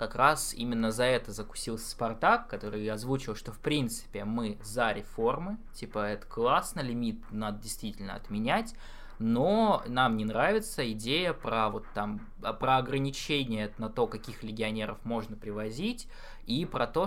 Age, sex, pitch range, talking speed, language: 20-39, male, 110-140 Hz, 145 wpm, Russian